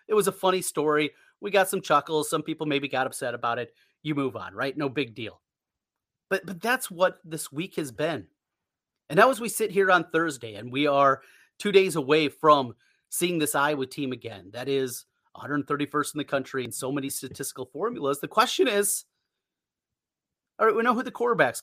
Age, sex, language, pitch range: 30-49, male, English, 135-195 Hz